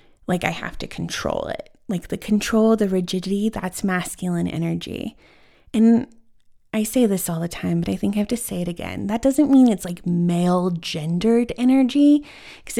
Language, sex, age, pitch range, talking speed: English, female, 20-39, 175-220 Hz, 185 wpm